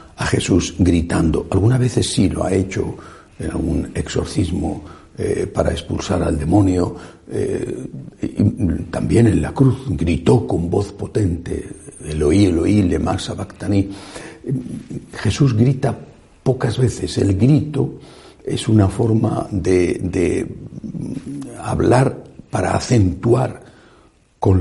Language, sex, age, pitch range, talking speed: Spanish, male, 60-79, 90-115 Hz, 115 wpm